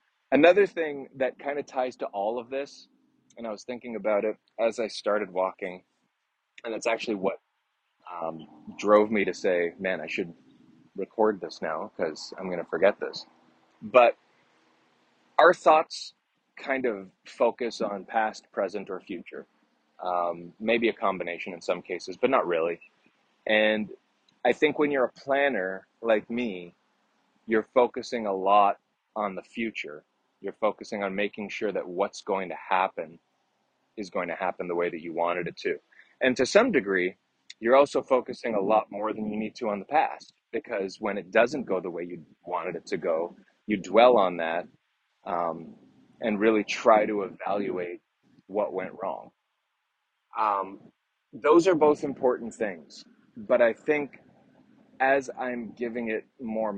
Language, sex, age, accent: English, male, 20-39, American